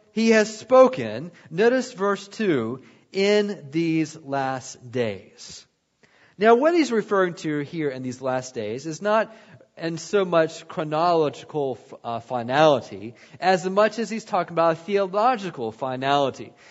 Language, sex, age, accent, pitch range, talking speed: English, male, 40-59, American, 175-240 Hz, 135 wpm